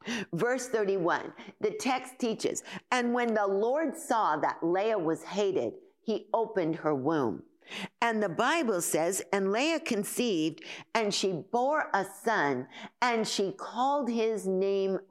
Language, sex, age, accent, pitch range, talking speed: English, female, 50-69, American, 185-260 Hz, 140 wpm